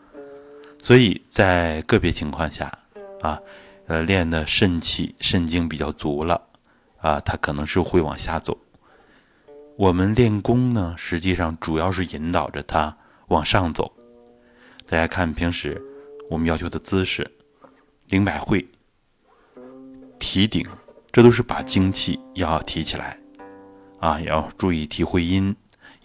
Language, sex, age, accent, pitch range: Chinese, male, 20-39, native, 80-105 Hz